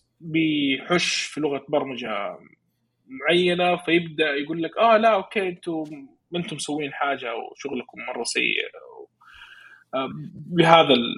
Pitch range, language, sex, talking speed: 155-220 Hz, Arabic, male, 100 wpm